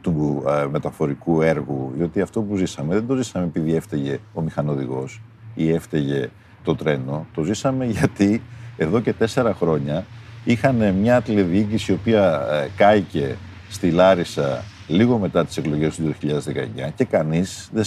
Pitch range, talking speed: 85-120 Hz, 165 wpm